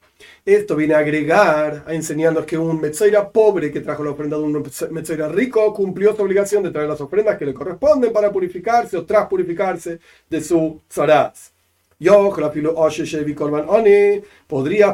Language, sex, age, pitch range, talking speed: Spanish, male, 40-59, 155-200 Hz, 170 wpm